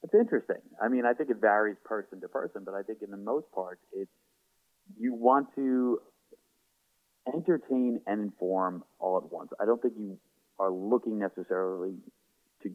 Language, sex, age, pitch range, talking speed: English, male, 30-49, 90-120 Hz, 170 wpm